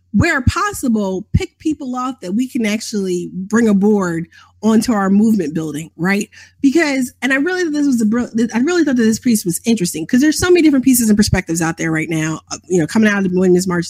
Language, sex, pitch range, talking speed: English, female, 180-230 Hz, 225 wpm